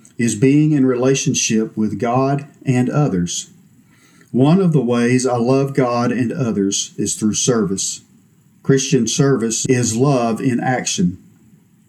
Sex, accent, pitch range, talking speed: male, American, 115-150 Hz, 130 wpm